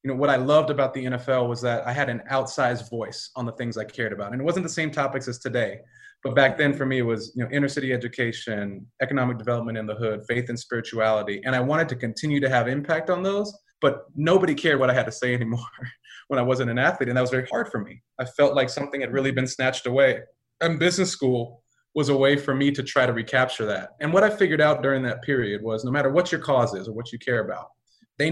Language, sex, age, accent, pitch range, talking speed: English, male, 30-49, American, 125-160 Hz, 260 wpm